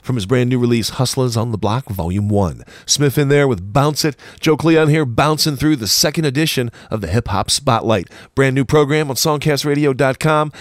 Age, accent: 40-59, American